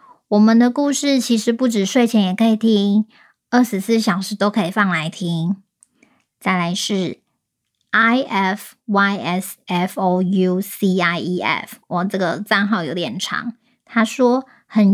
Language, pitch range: Chinese, 200-245 Hz